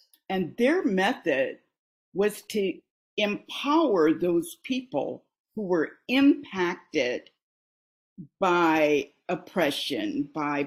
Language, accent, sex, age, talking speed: English, American, female, 50-69, 80 wpm